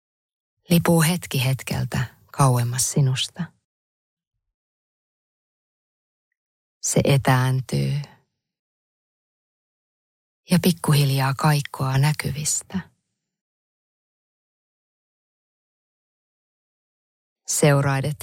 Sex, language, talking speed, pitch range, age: female, Finnish, 40 wpm, 130-165 Hz, 20-39